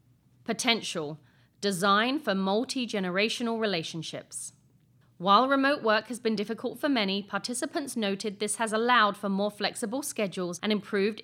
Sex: female